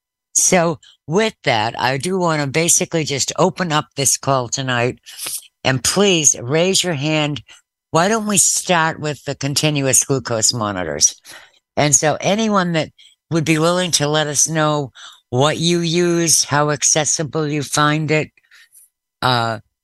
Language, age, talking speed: English, 60-79, 145 wpm